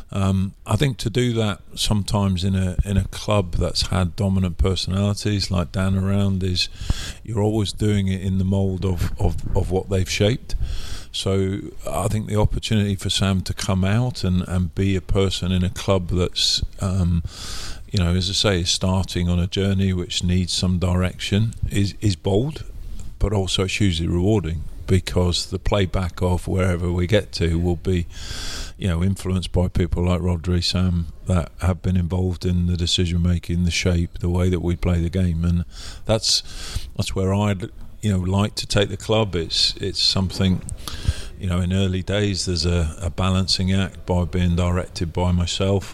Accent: British